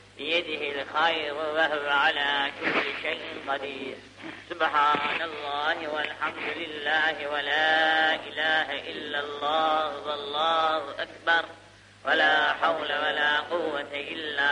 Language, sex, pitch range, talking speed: Turkish, female, 140-155 Hz, 90 wpm